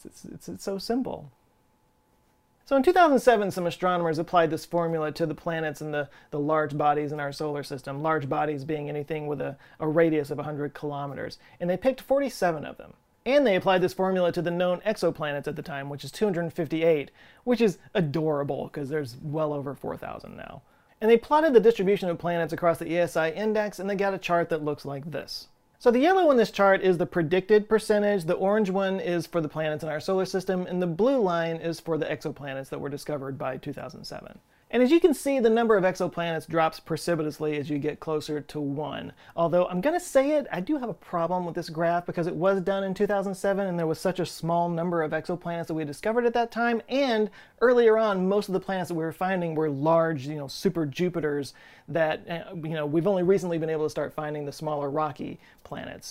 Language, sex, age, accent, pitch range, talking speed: English, male, 30-49, American, 155-200 Hz, 220 wpm